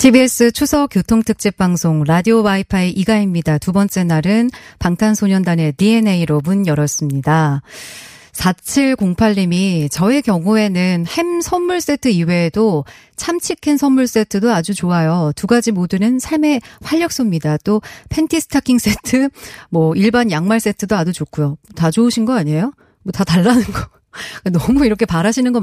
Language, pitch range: Korean, 170-235 Hz